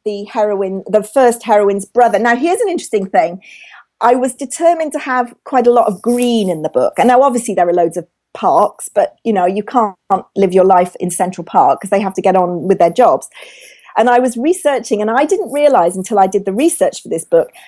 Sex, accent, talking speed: female, British, 230 wpm